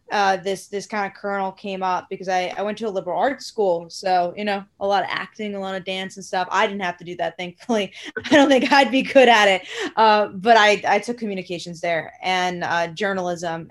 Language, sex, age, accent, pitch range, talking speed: English, female, 20-39, American, 180-235 Hz, 240 wpm